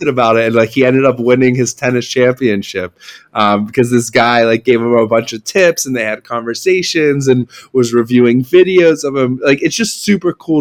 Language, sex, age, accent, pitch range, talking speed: English, male, 20-39, American, 110-135 Hz, 210 wpm